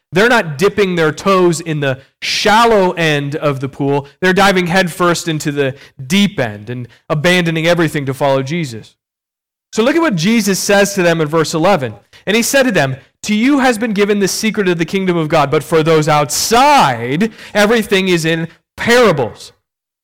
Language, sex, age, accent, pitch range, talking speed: English, male, 30-49, American, 145-195 Hz, 185 wpm